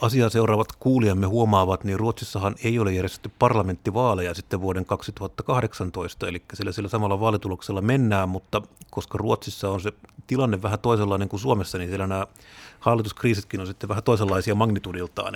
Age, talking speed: 30-49, 150 wpm